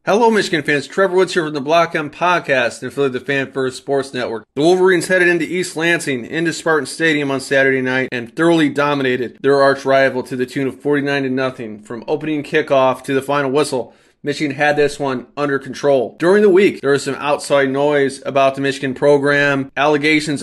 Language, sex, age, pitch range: English, male, 20-39, 130-145 Hz